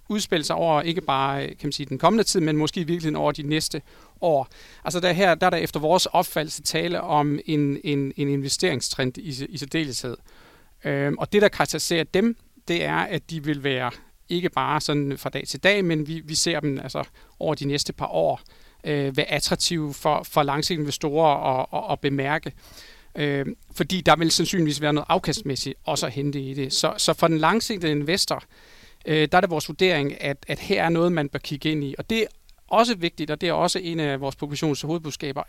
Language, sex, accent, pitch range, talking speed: Danish, male, native, 140-175 Hz, 210 wpm